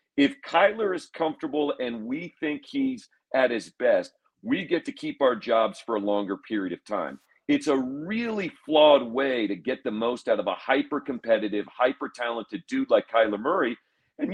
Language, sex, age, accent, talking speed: English, male, 50-69, American, 175 wpm